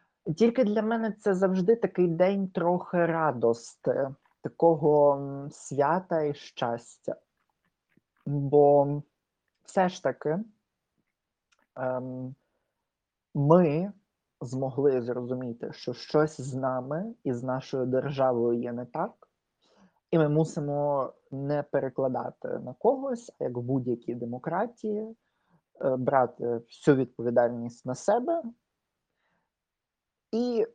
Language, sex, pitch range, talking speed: Ukrainian, male, 125-170 Hz, 95 wpm